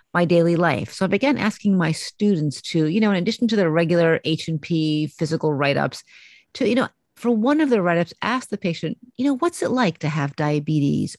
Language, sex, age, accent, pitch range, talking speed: English, female, 40-59, American, 155-200 Hz, 220 wpm